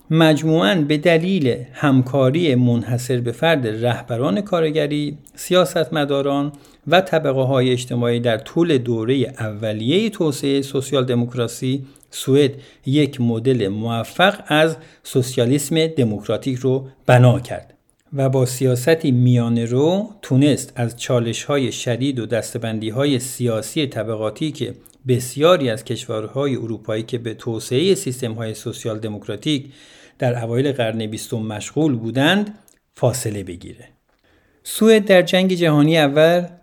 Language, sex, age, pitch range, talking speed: Persian, male, 50-69, 120-150 Hz, 115 wpm